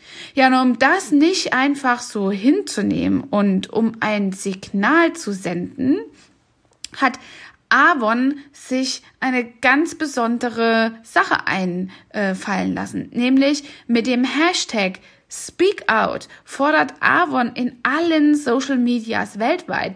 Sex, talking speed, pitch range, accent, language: female, 110 wpm, 235-305 Hz, German, German